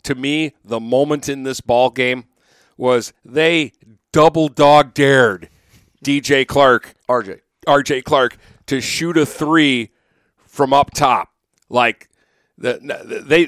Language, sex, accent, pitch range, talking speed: English, male, American, 125-150 Hz, 110 wpm